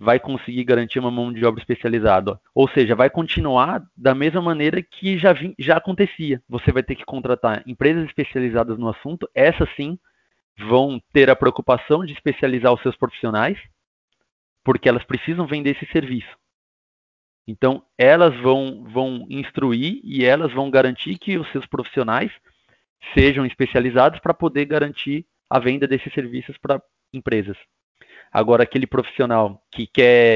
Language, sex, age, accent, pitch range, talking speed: Portuguese, male, 30-49, Brazilian, 115-140 Hz, 145 wpm